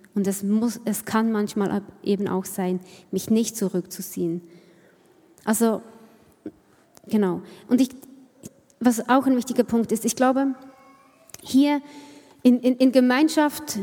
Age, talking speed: 20-39, 125 wpm